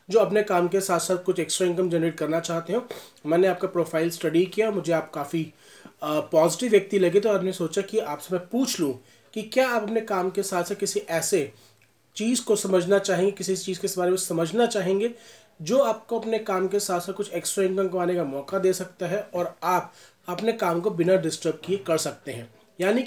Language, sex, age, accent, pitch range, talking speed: Hindi, male, 30-49, native, 175-215 Hz, 210 wpm